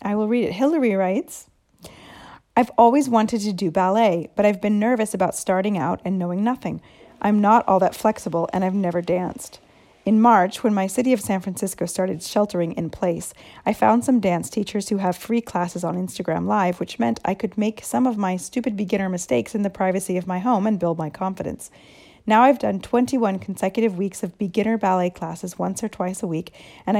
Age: 30-49